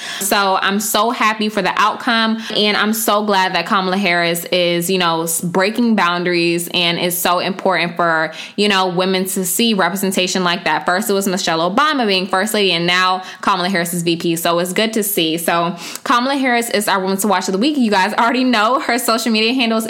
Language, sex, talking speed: English, female, 210 wpm